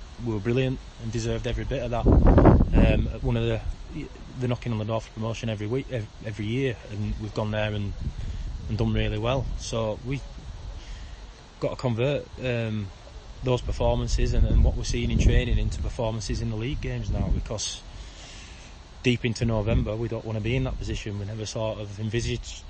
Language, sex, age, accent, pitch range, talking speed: English, male, 20-39, British, 100-120 Hz, 195 wpm